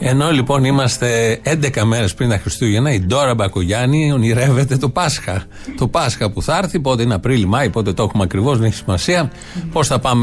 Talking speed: 195 wpm